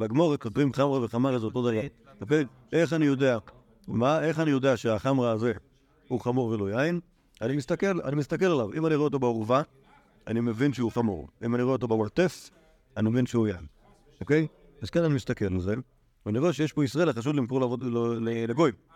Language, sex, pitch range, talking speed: Hebrew, male, 110-145 Hz, 165 wpm